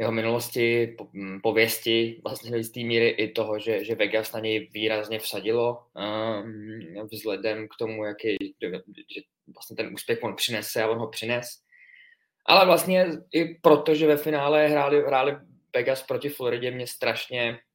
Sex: male